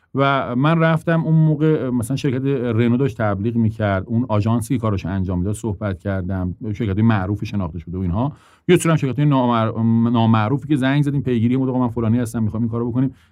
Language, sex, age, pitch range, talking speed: English, male, 40-59, 105-135 Hz, 185 wpm